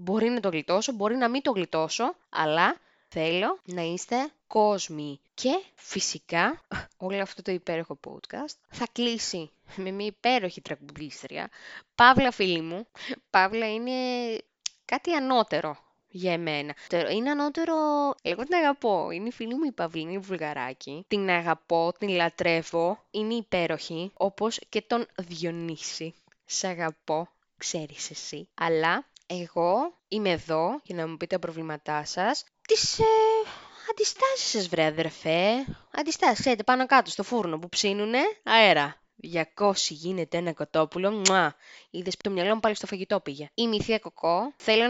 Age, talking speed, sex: 20-39, 145 wpm, female